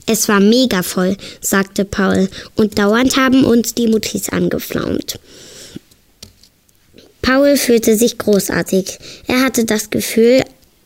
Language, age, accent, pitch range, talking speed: German, 10-29, German, 190-240 Hz, 115 wpm